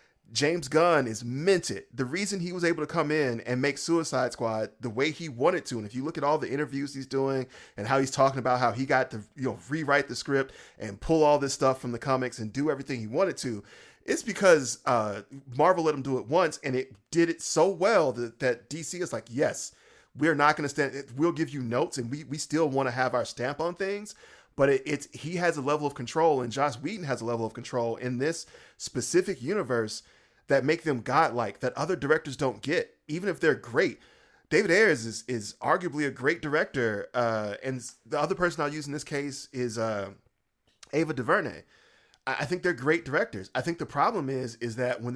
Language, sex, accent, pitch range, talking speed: English, male, American, 120-150 Hz, 225 wpm